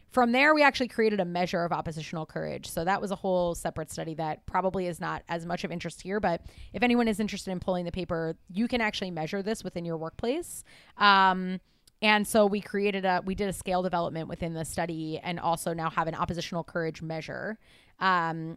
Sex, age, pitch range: female, 20-39, 170-200 Hz